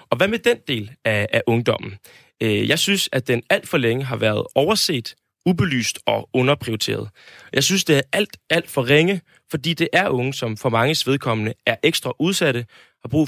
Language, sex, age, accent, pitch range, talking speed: Danish, male, 20-39, native, 120-165 Hz, 190 wpm